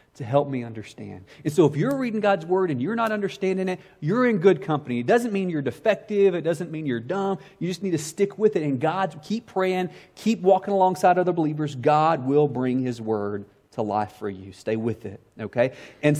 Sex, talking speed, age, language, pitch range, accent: male, 220 wpm, 30-49, English, 140-215 Hz, American